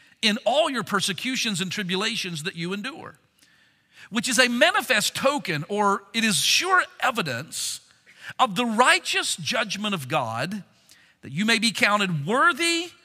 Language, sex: English, male